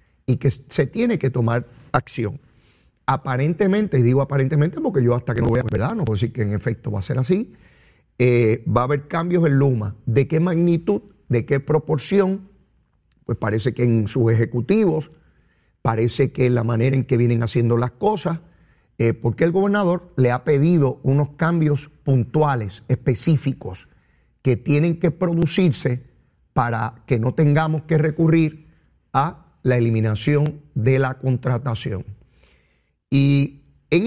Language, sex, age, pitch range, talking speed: Spanish, male, 40-59, 120-165 Hz, 150 wpm